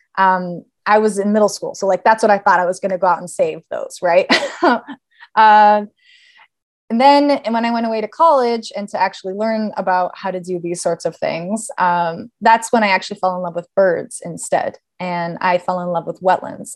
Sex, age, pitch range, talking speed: female, 20-39, 180-225 Hz, 225 wpm